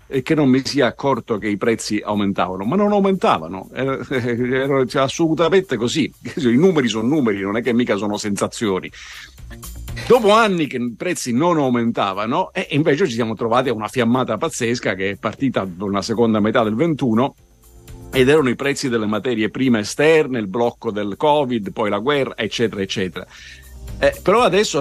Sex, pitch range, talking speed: male, 105-135 Hz, 175 wpm